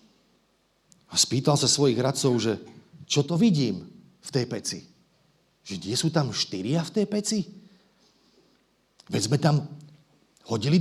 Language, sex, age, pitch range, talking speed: Slovak, male, 50-69, 125-195 Hz, 135 wpm